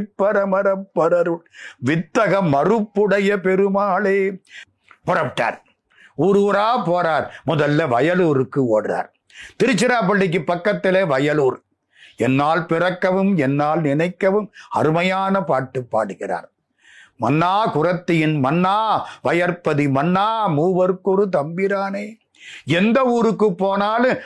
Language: Tamil